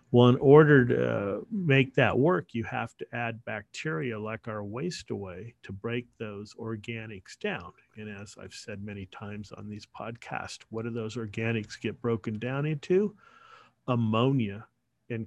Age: 50-69